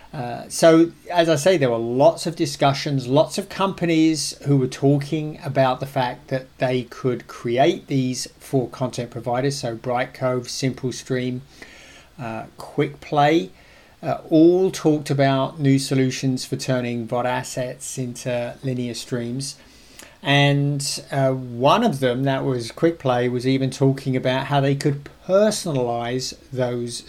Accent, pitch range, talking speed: British, 125-145 Hz, 135 wpm